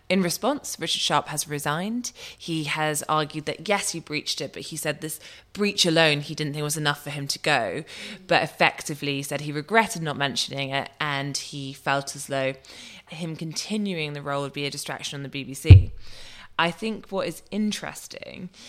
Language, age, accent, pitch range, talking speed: English, 20-39, British, 140-165 Hz, 185 wpm